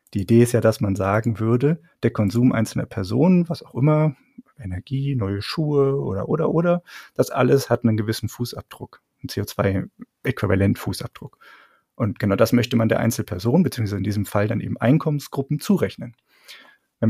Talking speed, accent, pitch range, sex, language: 160 wpm, German, 105-140 Hz, male, German